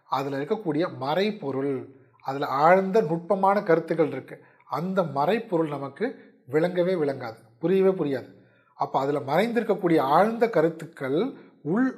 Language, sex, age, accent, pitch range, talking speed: Tamil, male, 30-49, native, 145-190 Hz, 105 wpm